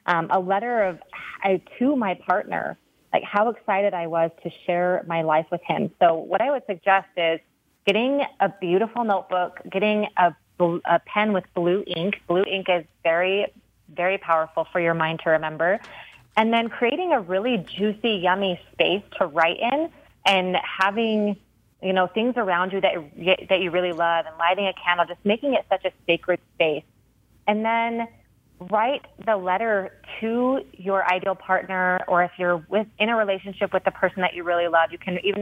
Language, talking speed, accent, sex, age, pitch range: English, 180 wpm, American, female, 30-49, 175-205 Hz